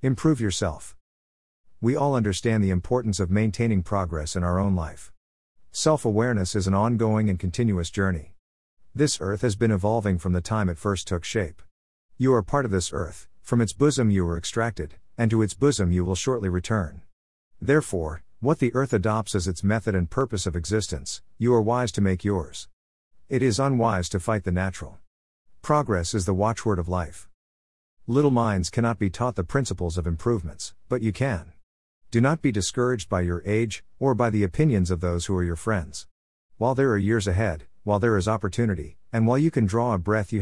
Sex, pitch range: male, 90-115 Hz